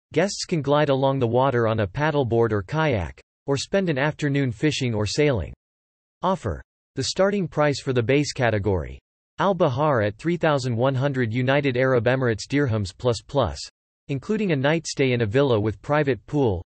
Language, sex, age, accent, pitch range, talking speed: English, male, 40-59, American, 115-150 Hz, 160 wpm